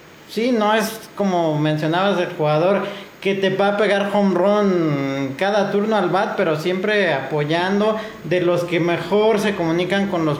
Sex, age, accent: male, 40-59, Mexican